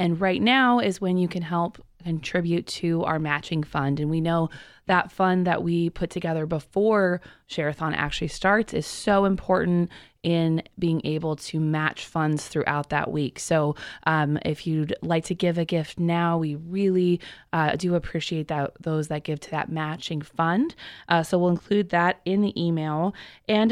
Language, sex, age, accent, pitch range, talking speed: English, female, 20-39, American, 160-195 Hz, 175 wpm